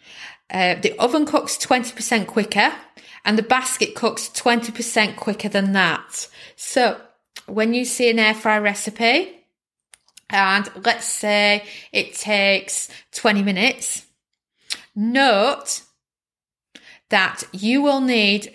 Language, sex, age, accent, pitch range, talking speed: English, female, 30-49, British, 190-230 Hz, 110 wpm